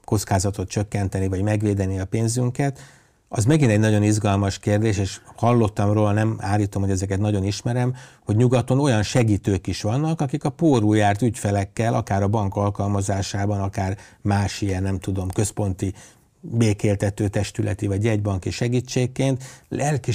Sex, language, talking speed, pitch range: male, Hungarian, 140 wpm, 100-120 Hz